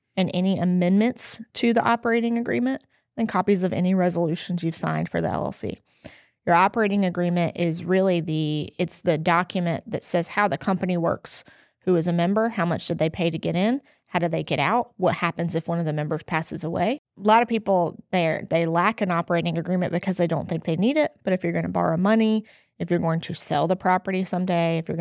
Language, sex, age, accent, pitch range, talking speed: English, female, 20-39, American, 170-200 Hz, 220 wpm